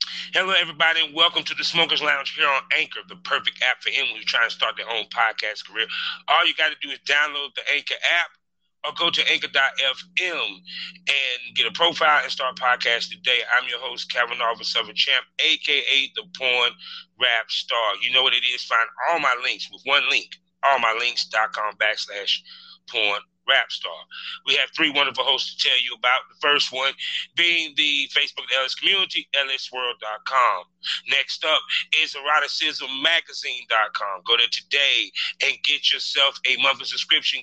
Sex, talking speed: male, 175 wpm